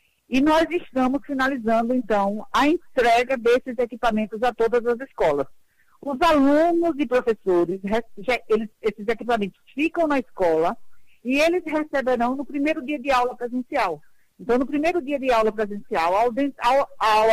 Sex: female